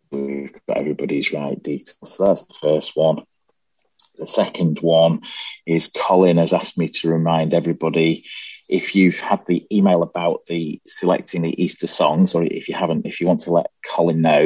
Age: 30-49